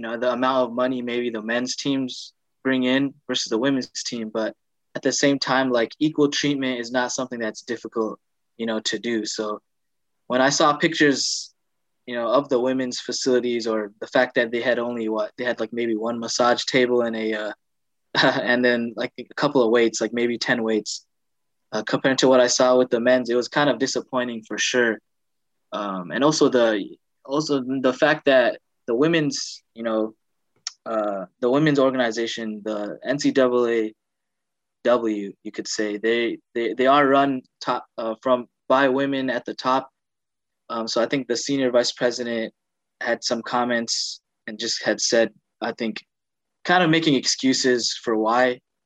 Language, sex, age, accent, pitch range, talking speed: English, male, 20-39, American, 115-130 Hz, 180 wpm